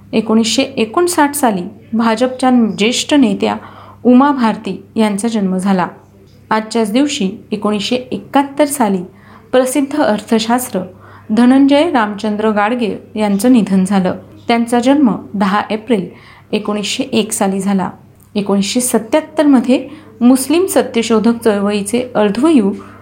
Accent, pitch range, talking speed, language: native, 205-255 Hz, 95 wpm, Marathi